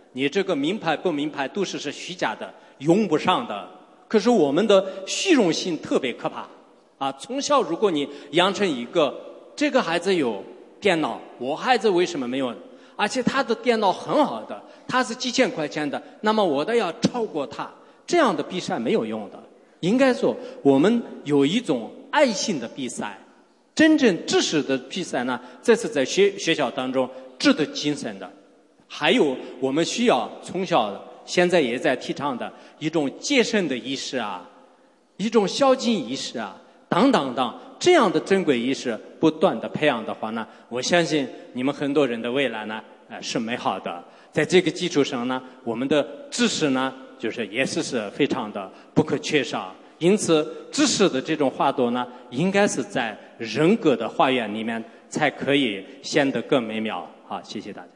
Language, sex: English, male